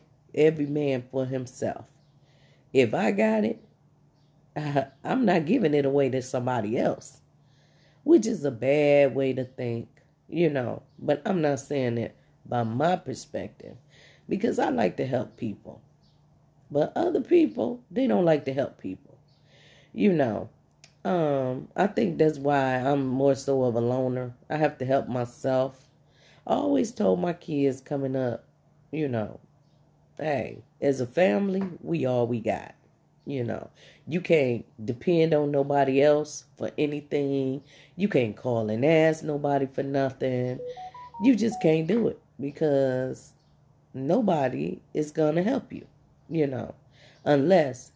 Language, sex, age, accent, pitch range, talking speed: English, female, 40-59, American, 130-160 Hz, 145 wpm